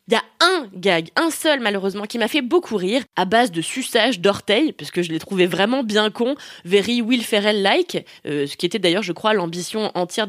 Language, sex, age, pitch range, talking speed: French, female, 20-39, 185-270 Hz, 220 wpm